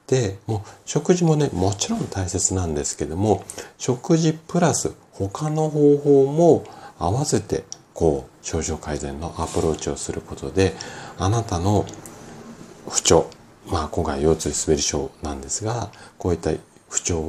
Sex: male